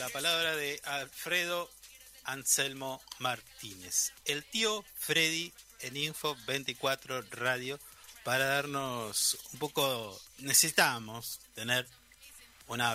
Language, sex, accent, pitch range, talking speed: Spanish, male, Argentinian, 110-135 Hz, 95 wpm